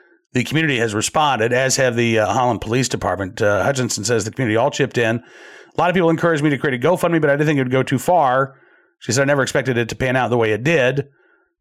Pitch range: 115-145 Hz